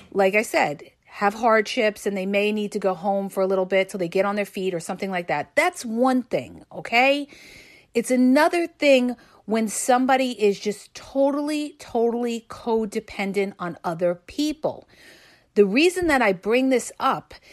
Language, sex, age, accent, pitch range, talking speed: English, female, 40-59, American, 195-265 Hz, 170 wpm